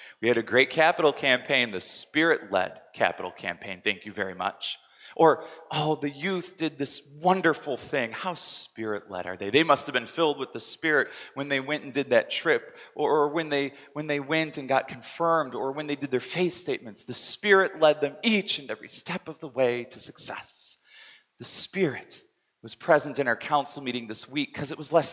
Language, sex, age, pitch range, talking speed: English, male, 30-49, 130-170 Hz, 200 wpm